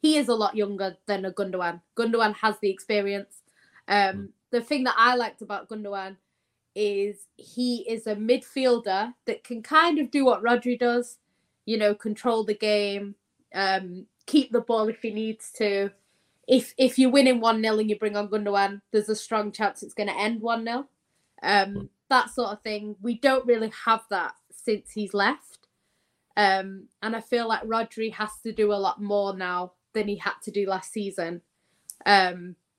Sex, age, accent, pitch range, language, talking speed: female, 20-39, British, 195-230 Hz, English, 185 wpm